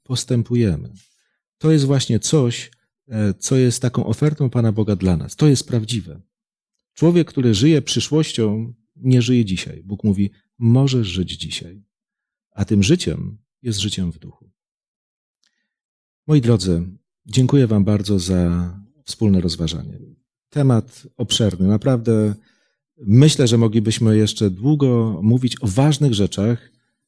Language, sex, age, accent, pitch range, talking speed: Polish, male, 40-59, native, 100-130 Hz, 120 wpm